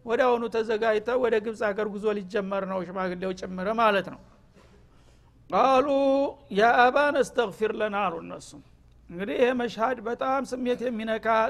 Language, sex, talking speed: Amharic, male, 120 wpm